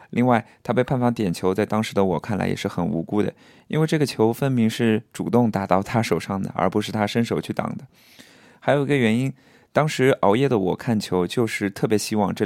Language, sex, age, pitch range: Chinese, male, 20-39, 90-110 Hz